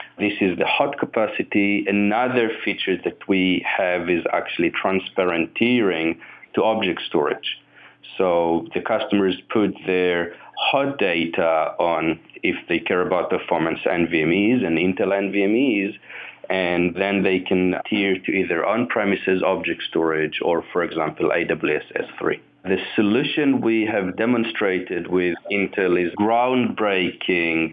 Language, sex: English, male